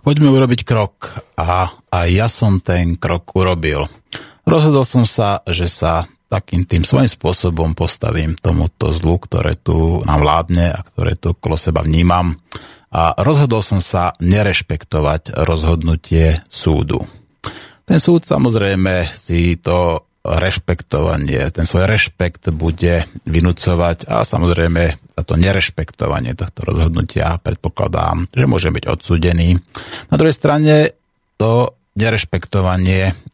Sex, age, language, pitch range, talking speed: male, 30-49, Slovak, 85-110 Hz, 120 wpm